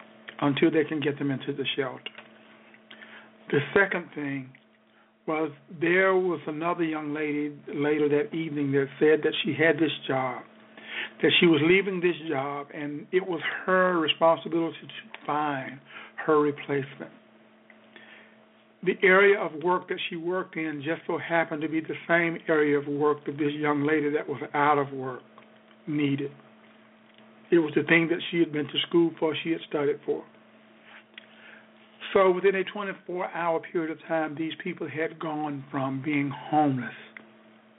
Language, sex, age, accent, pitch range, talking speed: English, male, 60-79, American, 145-165 Hz, 155 wpm